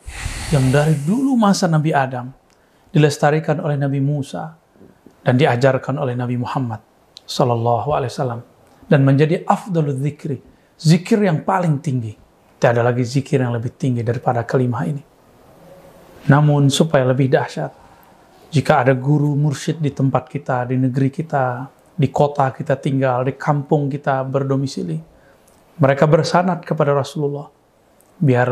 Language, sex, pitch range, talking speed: Indonesian, male, 125-150 Hz, 135 wpm